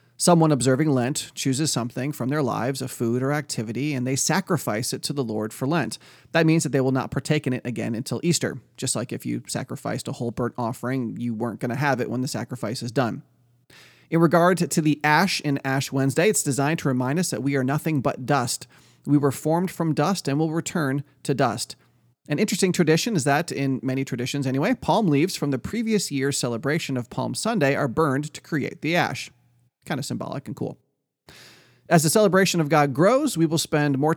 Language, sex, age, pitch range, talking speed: English, male, 30-49, 130-165 Hz, 215 wpm